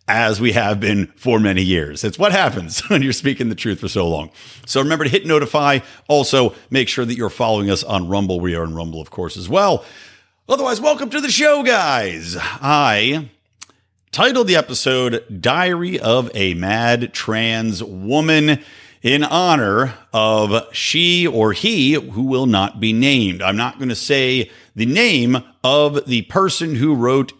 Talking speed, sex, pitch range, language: 175 wpm, male, 100-140 Hz, English